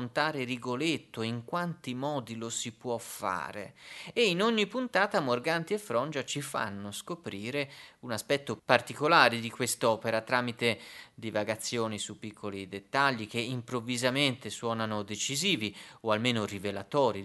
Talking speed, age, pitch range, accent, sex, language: 120 wpm, 30-49, 105-125 Hz, native, male, Italian